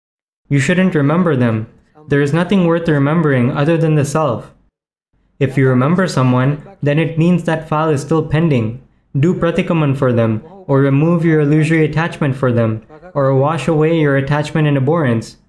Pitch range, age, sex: 135-165 Hz, 20-39, male